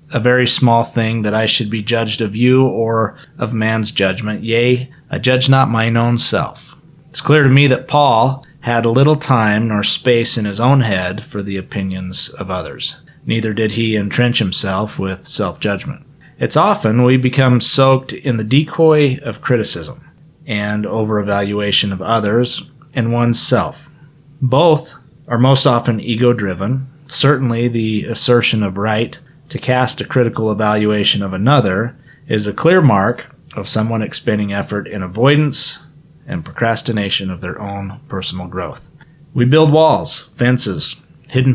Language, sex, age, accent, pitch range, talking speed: English, male, 30-49, American, 110-140 Hz, 150 wpm